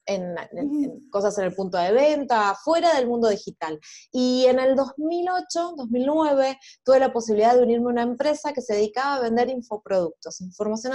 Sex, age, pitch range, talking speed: female, 20-39, 210-275 Hz, 180 wpm